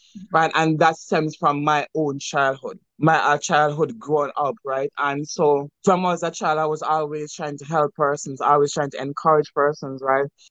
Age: 20-39